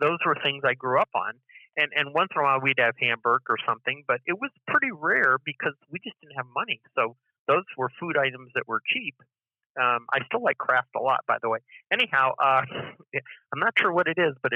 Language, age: English, 40-59